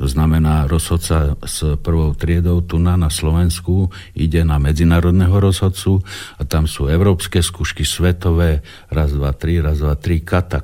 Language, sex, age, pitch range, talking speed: Slovak, male, 60-79, 80-95 Hz, 140 wpm